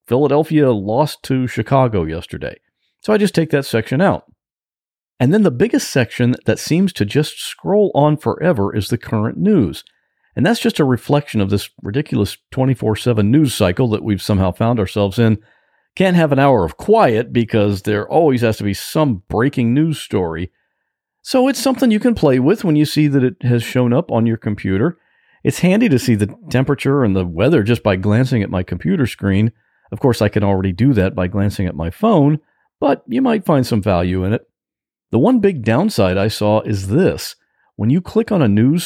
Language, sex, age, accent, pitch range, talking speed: English, male, 50-69, American, 105-150 Hz, 200 wpm